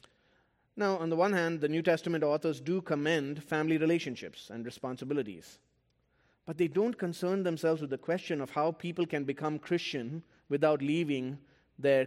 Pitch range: 115-170 Hz